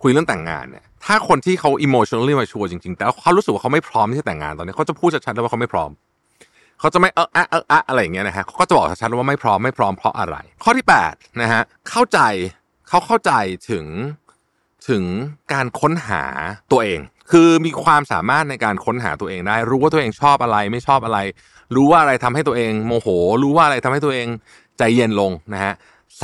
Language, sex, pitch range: Thai, male, 95-140 Hz